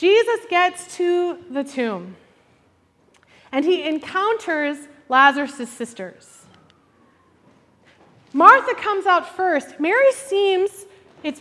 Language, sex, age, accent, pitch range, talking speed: English, female, 30-49, American, 240-345 Hz, 90 wpm